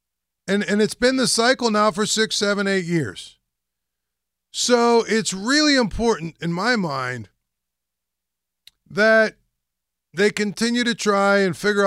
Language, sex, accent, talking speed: English, male, American, 130 wpm